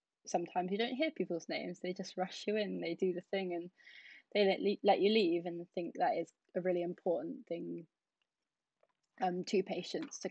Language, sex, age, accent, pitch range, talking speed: English, female, 10-29, British, 175-205 Hz, 200 wpm